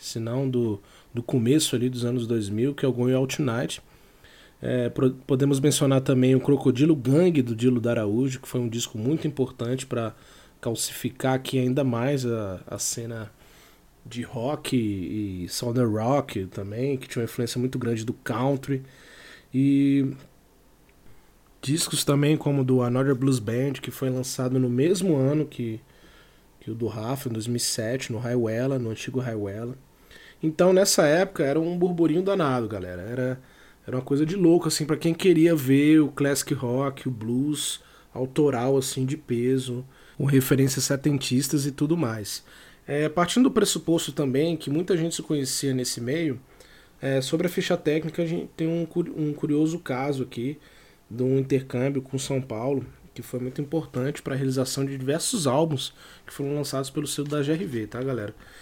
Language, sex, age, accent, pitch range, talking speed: Portuguese, male, 20-39, Brazilian, 125-150 Hz, 165 wpm